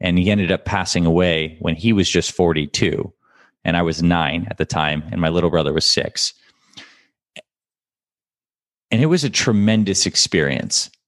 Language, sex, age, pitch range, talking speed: English, male, 20-39, 85-100 Hz, 160 wpm